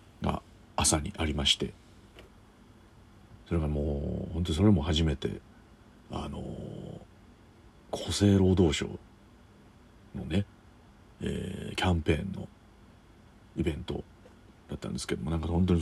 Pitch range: 80-105 Hz